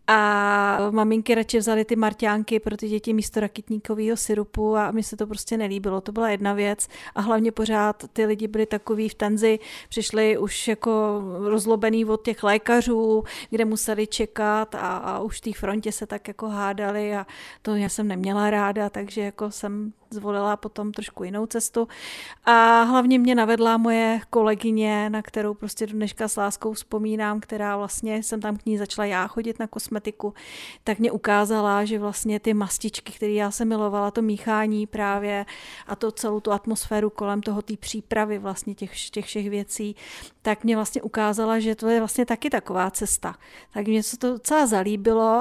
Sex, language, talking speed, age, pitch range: female, Czech, 175 wpm, 40-59, 210-225 Hz